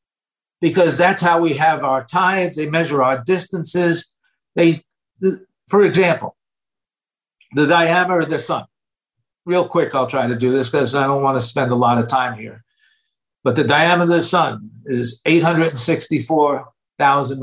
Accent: American